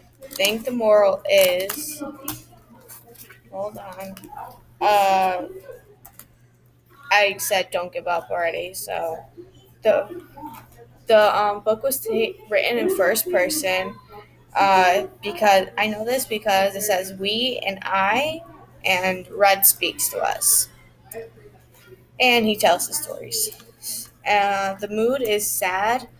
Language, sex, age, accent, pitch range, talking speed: English, female, 10-29, American, 185-240 Hz, 110 wpm